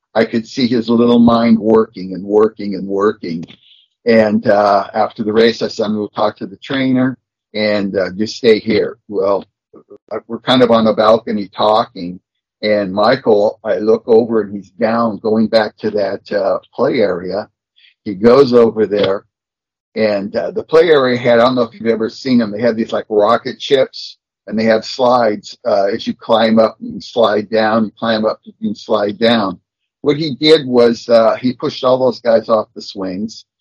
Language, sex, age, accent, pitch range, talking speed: English, male, 50-69, American, 110-130 Hz, 190 wpm